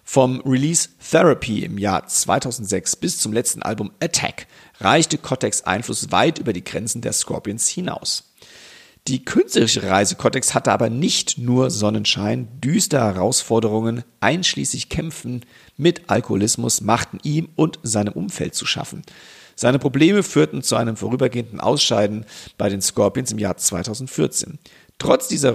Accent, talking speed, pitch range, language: German, 135 wpm, 110-140 Hz, German